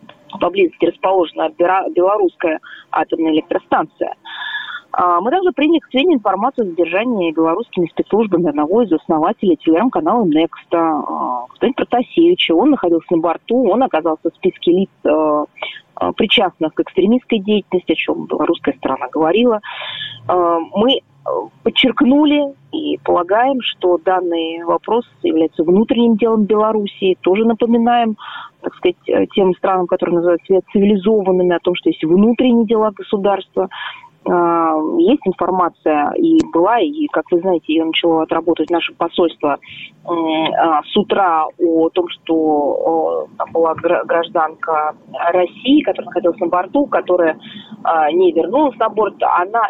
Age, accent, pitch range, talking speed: 30-49, native, 170-240 Hz, 120 wpm